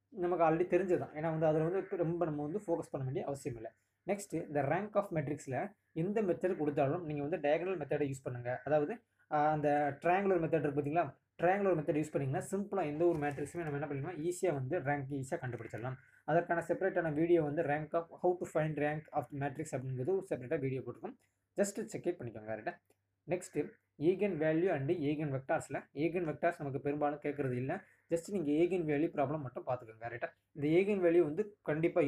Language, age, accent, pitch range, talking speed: Tamil, 20-39, native, 145-175 Hz, 180 wpm